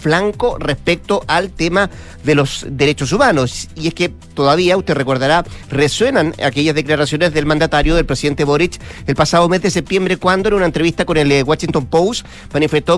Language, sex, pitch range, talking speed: Spanish, male, 140-175 Hz, 165 wpm